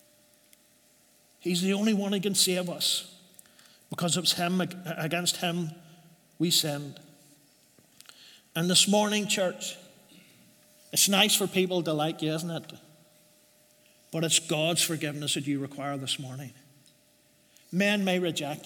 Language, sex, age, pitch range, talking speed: English, male, 50-69, 150-190 Hz, 130 wpm